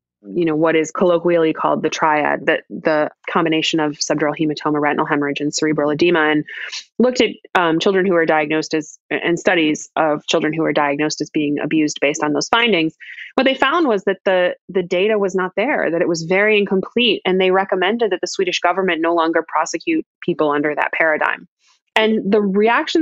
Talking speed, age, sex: 195 wpm, 20-39, female